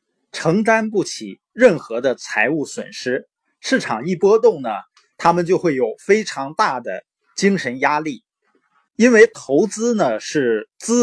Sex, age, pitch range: male, 20-39, 140-235 Hz